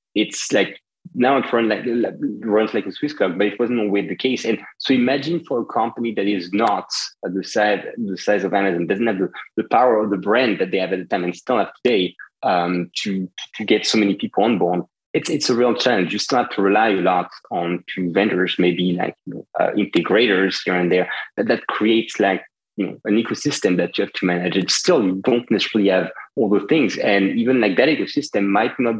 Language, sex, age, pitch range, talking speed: English, male, 30-49, 95-125 Hz, 235 wpm